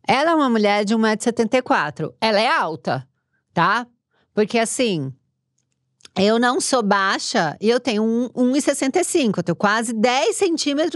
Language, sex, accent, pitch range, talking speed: Portuguese, female, Brazilian, 190-295 Hz, 130 wpm